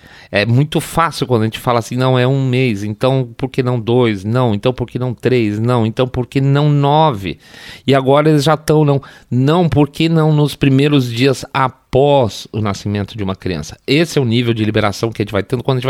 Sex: male